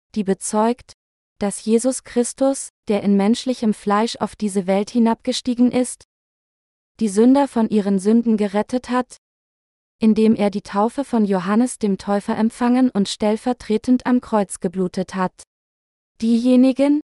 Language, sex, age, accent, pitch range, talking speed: German, female, 20-39, German, 200-250 Hz, 130 wpm